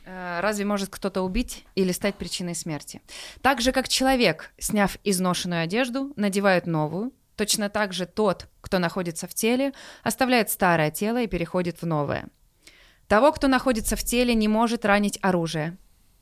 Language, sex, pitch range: Russian, female, 185-230 Hz